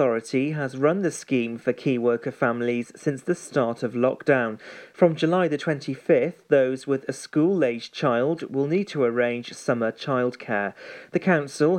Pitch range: 125-155 Hz